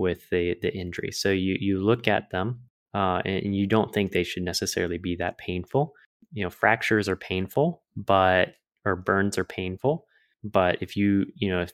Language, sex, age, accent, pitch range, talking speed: English, male, 20-39, American, 90-105 Hz, 190 wpm